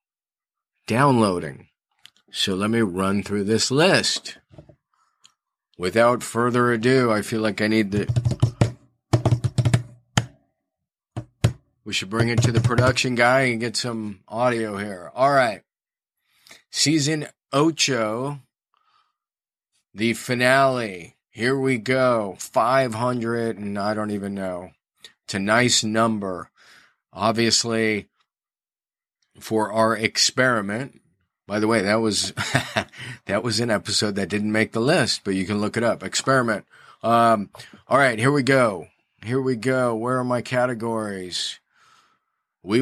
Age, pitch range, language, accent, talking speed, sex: 40-59, 105-125 Hz, English, American, 125 wpm, male